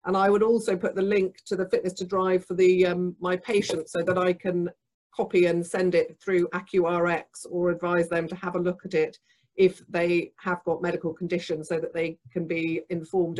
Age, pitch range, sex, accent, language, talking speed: 40-59, 160-185 Hz, female, British, English, 210 wpm